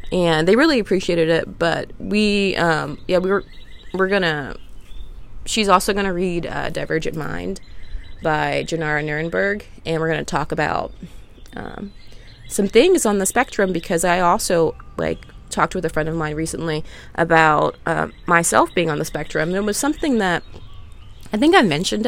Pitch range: 150-195 Hz